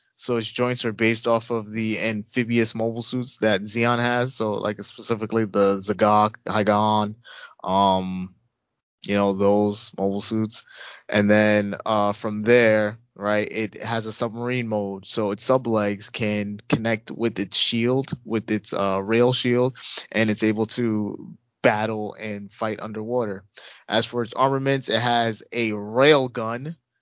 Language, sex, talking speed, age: English, male, 150 wpm, 20-39